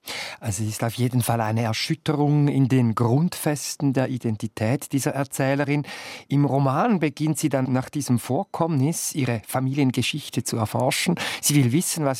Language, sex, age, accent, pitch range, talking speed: German, male, 50-69, German, 120-150 Hz, 150 wpm